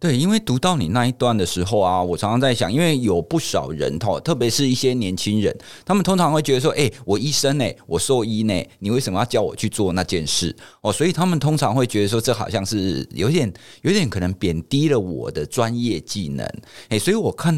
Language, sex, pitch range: Chinese, male, 100-130 Hz